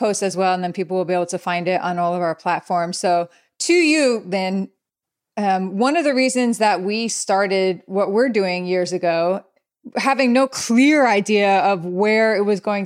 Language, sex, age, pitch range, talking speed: English, female, 30-49, 190-220 Hz, 195 wpm